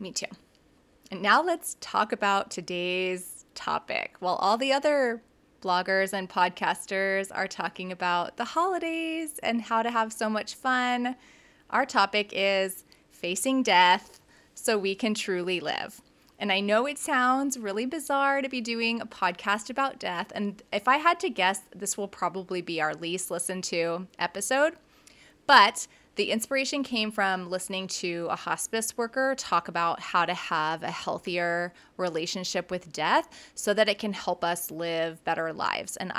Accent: American